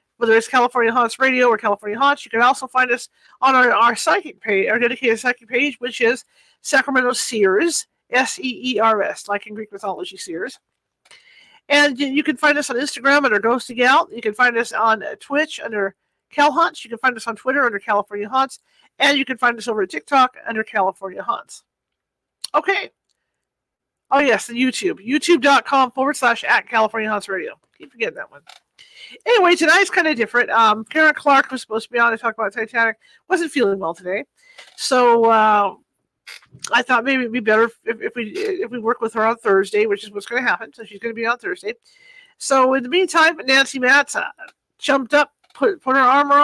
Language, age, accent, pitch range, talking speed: English, 50-69, American, 225-290 Hz, 195 wpm